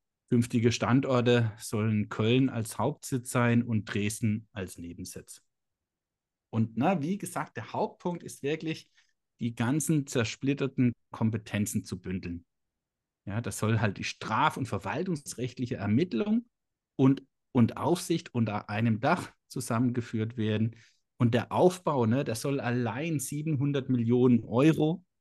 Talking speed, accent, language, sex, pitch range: 125 wpm, German, German, male, 115-150 Hz